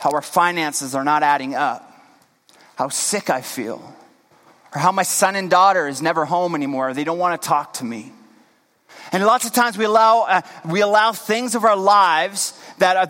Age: 30-49